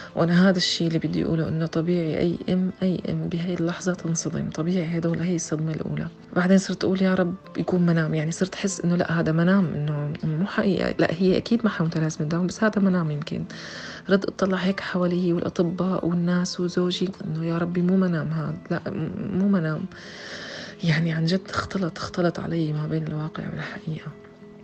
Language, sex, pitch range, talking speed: Arabic, female, 155-185 Hz, 185 wpm